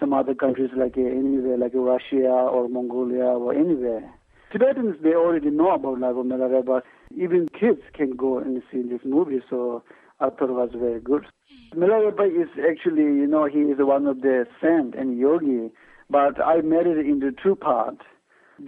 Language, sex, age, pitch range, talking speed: English, male, 60-79, 130-160 Hz, 175 wpm